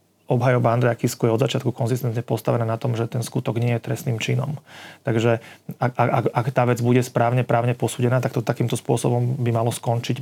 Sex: male